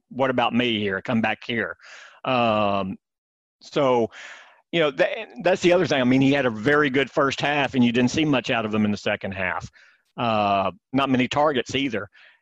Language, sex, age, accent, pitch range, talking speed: English, male, 50-69, American, 115-140 Hz, 200 wpm